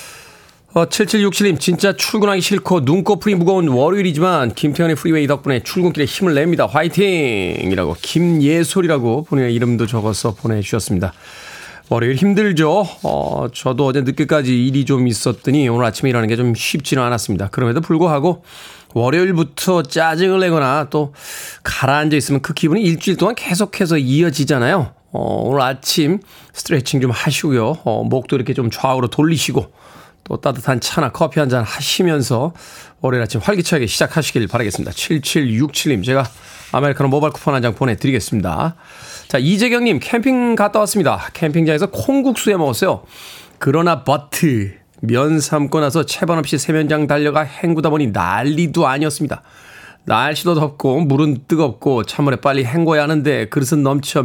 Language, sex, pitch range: Korean, male, 130-170 Hz